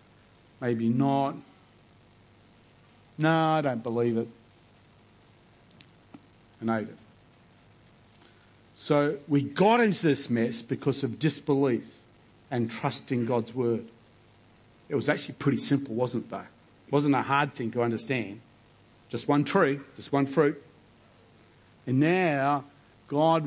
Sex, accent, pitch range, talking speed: male, Australian, 115-145 Hz, 120 wpm